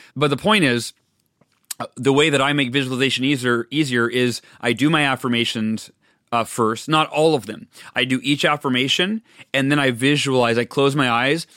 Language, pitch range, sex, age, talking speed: English, 120-145 Hz, male, 30-49, 180 wpm